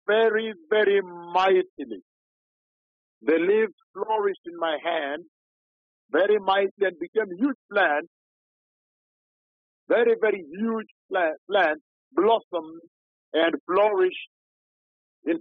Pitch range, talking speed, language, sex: 175-225 Hz, 95 wpm, English, male